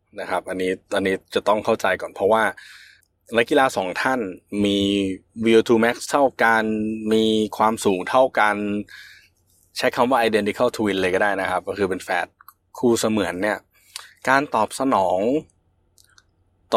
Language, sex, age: Thai, male, 20-39